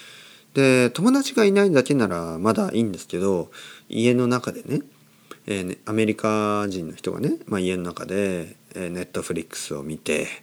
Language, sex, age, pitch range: Japanese, male, 40-59, 80-125 Hz